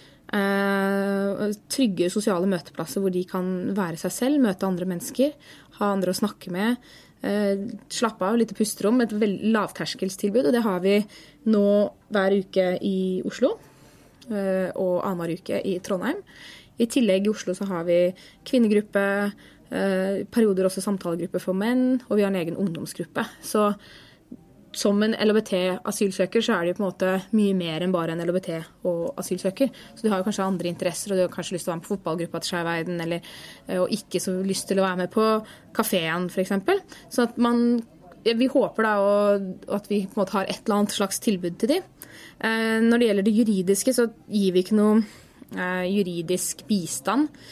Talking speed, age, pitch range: 165 wpm, 20-39, 180-220 Hz